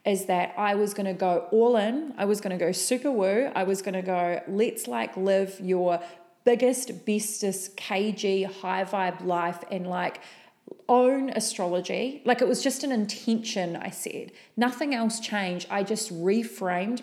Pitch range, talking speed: 190-230 Hz, 160 wpm